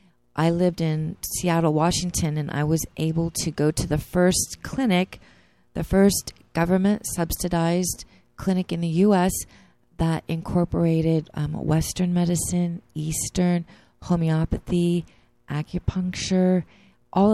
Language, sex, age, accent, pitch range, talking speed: English, female, 30-49, American, 155-180 Hz, 105 wpm